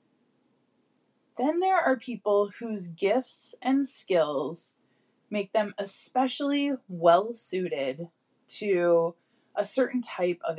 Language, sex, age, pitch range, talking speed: English, female, 20-39, 185-265 Hz, 95 wpm